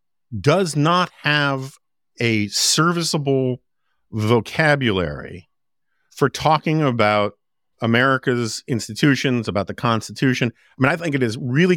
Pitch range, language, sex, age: 115-145 Hz, English, male, 50-69